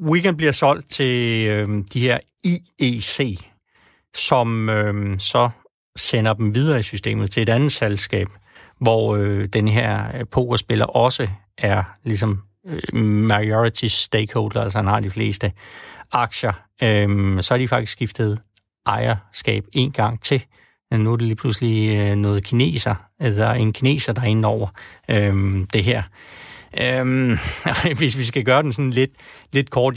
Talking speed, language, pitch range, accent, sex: 150 wpm, Danish, 105-125 Hz, native, male